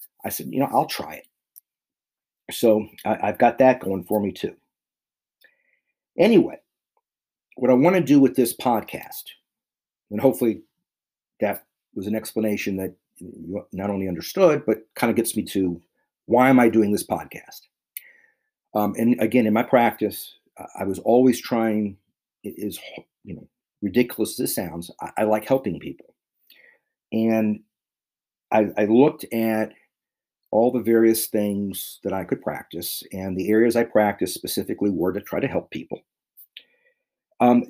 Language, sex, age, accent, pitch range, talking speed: English, male, 50-69, American, 105-125 Hz, 150 wpm